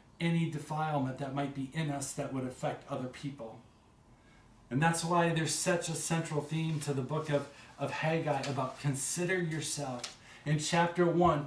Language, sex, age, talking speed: English, male, 40-59, 165 wpm